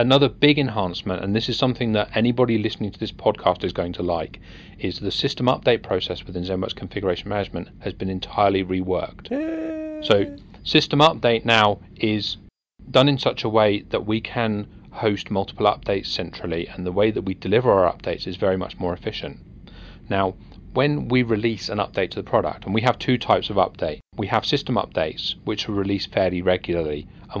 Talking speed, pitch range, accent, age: 190 wpm, 95-120 Hz, British, 30-49